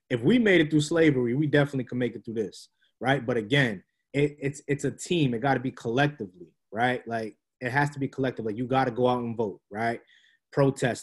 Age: 20-39